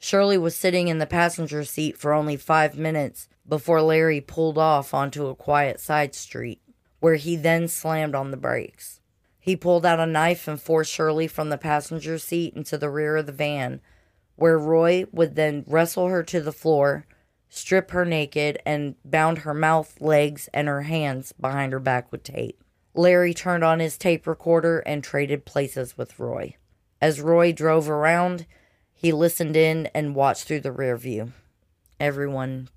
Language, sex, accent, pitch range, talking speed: English, female, American, 140-165 Hz, 175 wpm